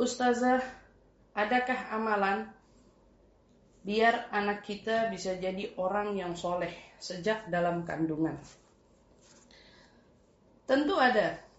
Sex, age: female, 30-49